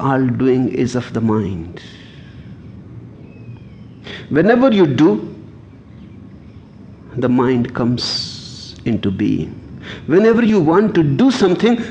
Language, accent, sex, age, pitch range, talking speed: English, Indian, male, 60-79, 110-160 Hz, 100 wpm